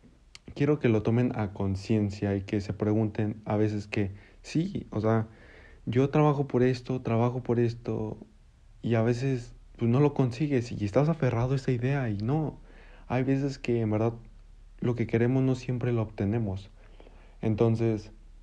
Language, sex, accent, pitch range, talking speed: Spanish, male, Mexican, 105-125 Hz, 165 wpm